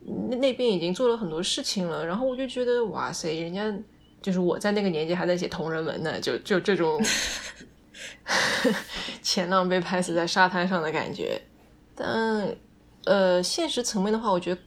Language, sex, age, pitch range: Chinese, female, 20-39, 170-205 Hz